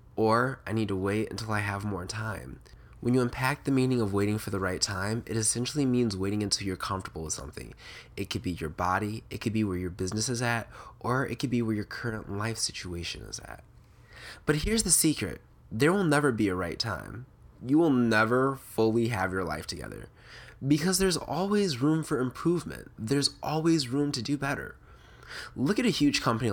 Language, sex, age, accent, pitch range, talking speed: English, male, 20-39, American, 100-130 Hz, 205 wpm